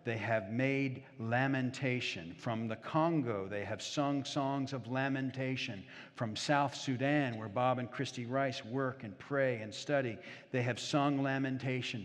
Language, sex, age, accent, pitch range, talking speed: English, male, 50-69, American, 110-145 Hz, 150 wpm